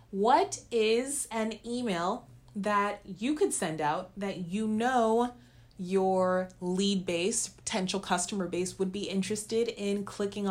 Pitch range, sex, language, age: 150-215 Hz, female, English, 30-49